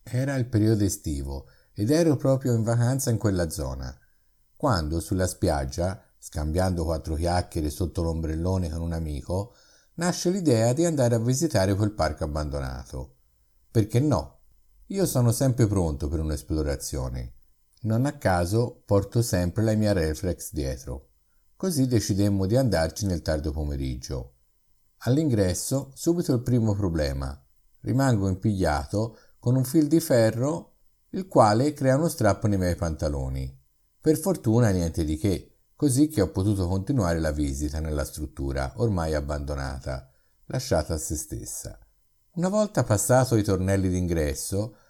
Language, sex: Italian, male